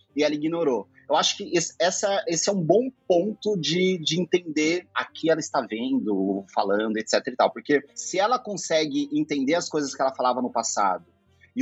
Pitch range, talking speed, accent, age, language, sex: 125-190 Hz, 190 wpm, Brazilian, 30-49, Portuguese, male